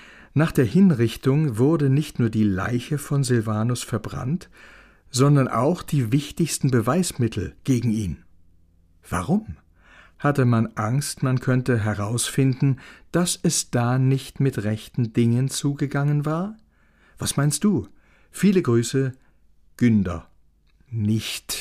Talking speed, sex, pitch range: 115 wpm, male, 110-140 Hz